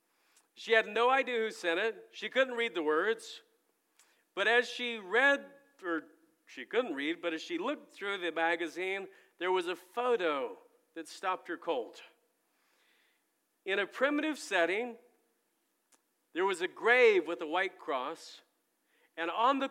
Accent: American